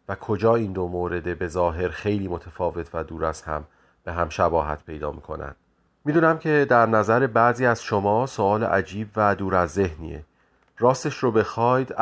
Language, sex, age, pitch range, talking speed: Persian, male, 30-49, 90-115 Hz, 175 wpm